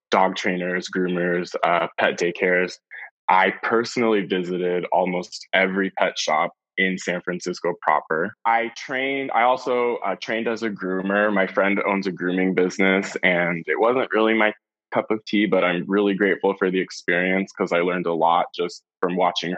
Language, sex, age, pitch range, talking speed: English, male, 20-39, 90-110 Hz, 170 wpm